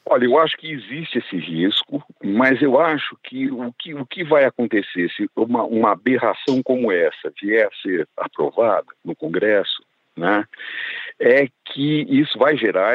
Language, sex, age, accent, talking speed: Portuguese, male, 60-79, Brazilian, 160 wpm